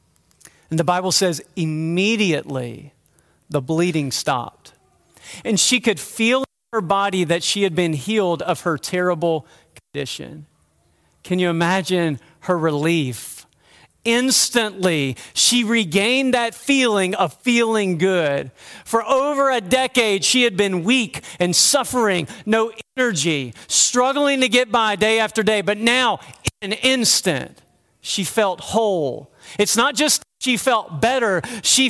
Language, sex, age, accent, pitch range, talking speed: English, male, 40-59, American, 170-235 Hz, 135 wpm